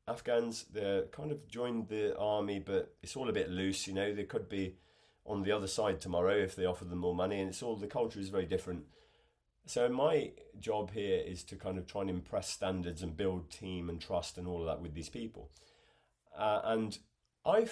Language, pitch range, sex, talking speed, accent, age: English, 95-125 Hz, male, 215 wpm, British, 30-49